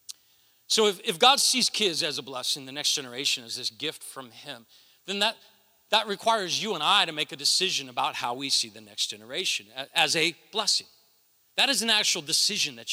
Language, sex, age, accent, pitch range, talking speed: English, male, 40-59, American, 150-195 Hz, 205 wpm